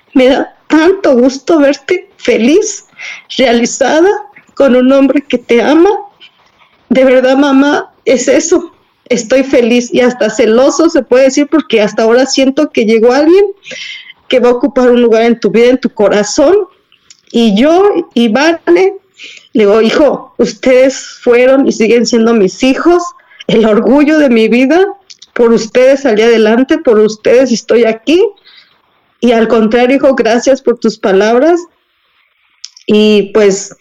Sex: female